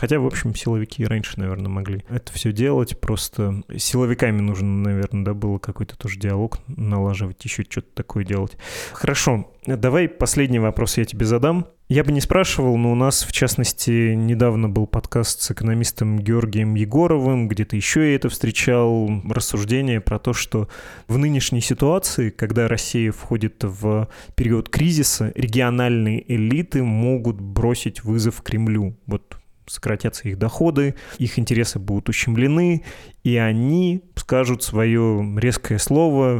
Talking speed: 140 wpm